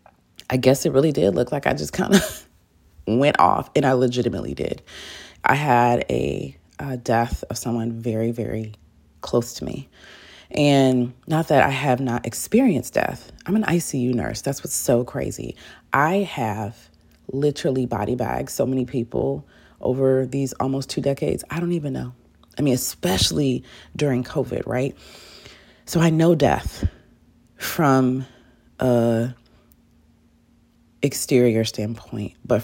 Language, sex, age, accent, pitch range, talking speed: English, female, 30-49, American, 115-140 Hz, 140 wpm